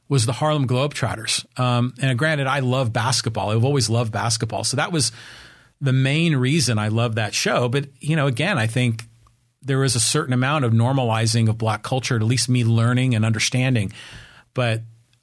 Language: English